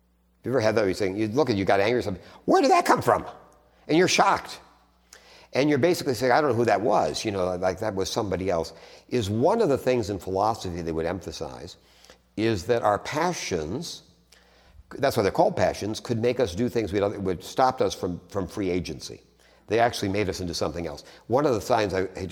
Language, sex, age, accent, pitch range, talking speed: English, male, 60-79, American, 80-105 Hz, 230 wpm